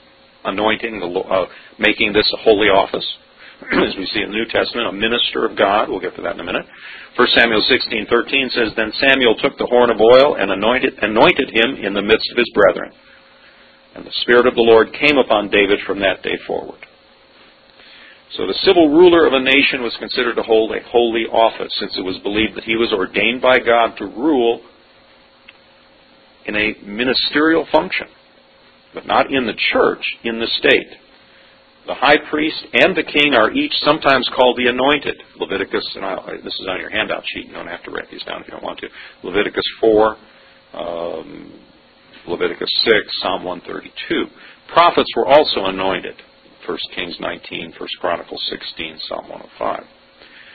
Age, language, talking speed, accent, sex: 50-69, English, 175 wpm, American, male